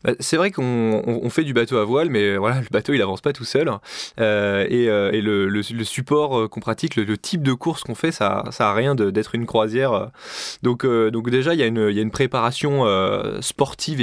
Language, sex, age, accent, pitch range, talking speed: French, male, 20-39, French, 110-135 Hz, 240 wpm